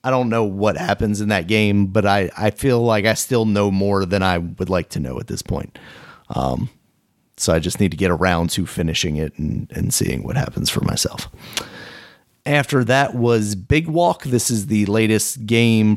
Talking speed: 205 wpm